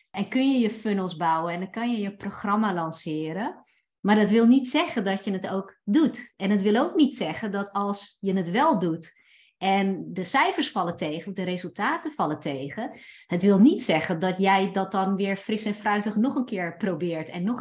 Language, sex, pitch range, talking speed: Dutch, female, 175-220 Hz, 210 wpm